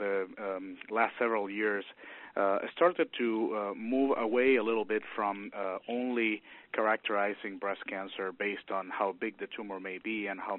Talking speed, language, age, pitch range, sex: 170 wpm, English, 30-49, 95-115 Hz, male